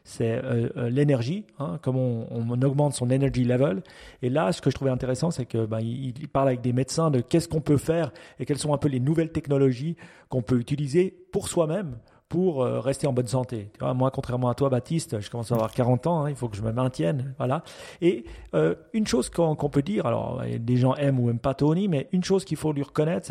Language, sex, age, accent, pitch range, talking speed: French, male, 30-49, French, 125-155 Hz, 240 wpm